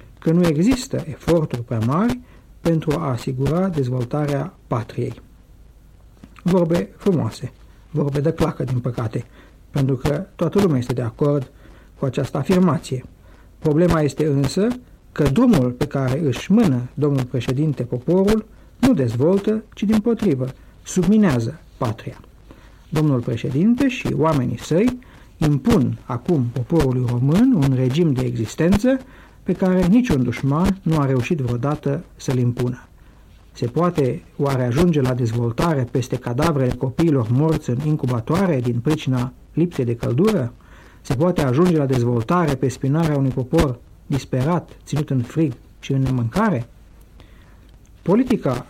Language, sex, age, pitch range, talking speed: Romanian, male, 60-79, 125-170 Hz, 130 wpm